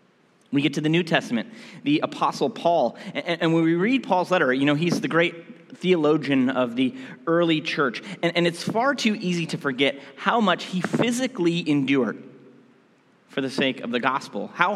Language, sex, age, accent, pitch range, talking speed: English, male, 30-49, American, 145-215 Hz, 180 wpm